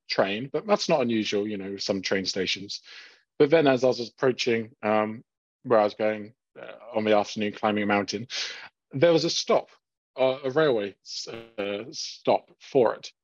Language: English